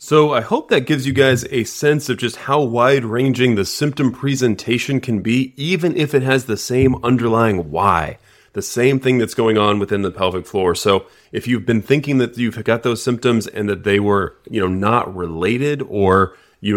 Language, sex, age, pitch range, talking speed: English, male, 30-49, 100-120 Hz, 200 wpm